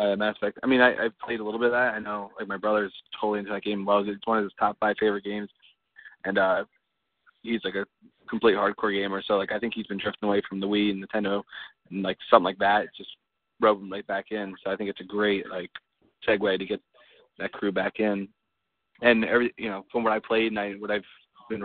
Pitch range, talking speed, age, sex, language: 100-110 Hz, 245 wpm, 20-39, male, English